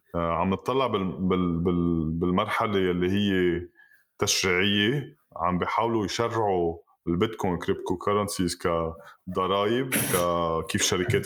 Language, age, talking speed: Arabic, 20-39, 70 wpm